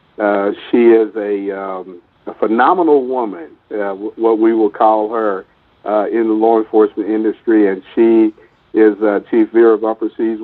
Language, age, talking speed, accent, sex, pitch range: English, 50-69, 165 wpm, American, male, 105-115 Hz